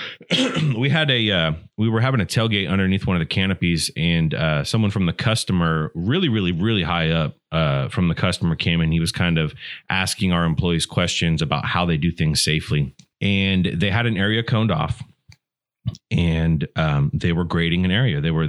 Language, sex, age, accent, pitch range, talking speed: English, male, 30-49, American, 85-110 Hz, 200 wpm